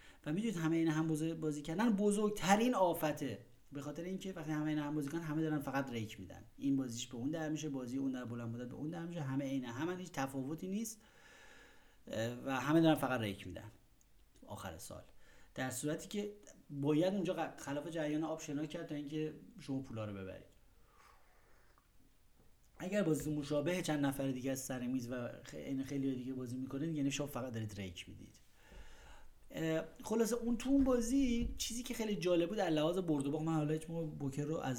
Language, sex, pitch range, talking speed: Persian, male, 125-160 Hz, 185 wpm